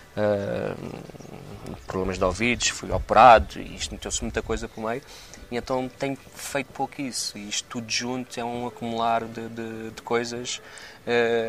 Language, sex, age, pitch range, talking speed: Portuguese, male, 20-39, 105-120 Hz, 160 wpm